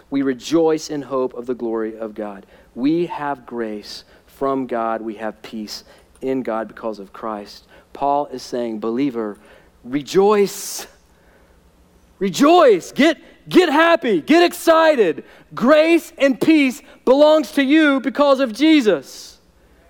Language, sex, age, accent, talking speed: English, male, 40-59, American, 125 wpm